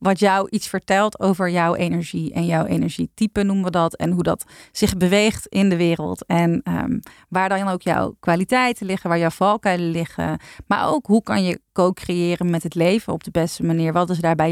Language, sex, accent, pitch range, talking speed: Dutch, female, Dutch, 170-195 Hz, 205 wpm